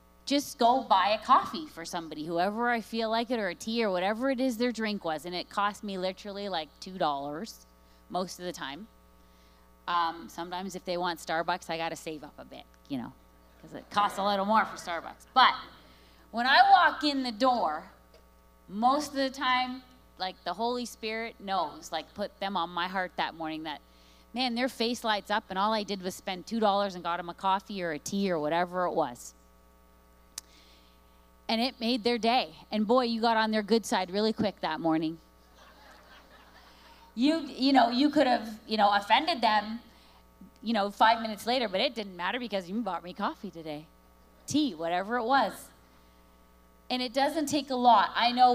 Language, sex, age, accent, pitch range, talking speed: English, female, 30-49, American, 150-235 Hz, 195 wpm